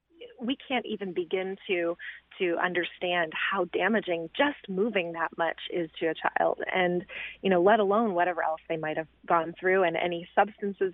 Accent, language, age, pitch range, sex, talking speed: American, English, 30-49, 175-215 Hz, female, 175 wpm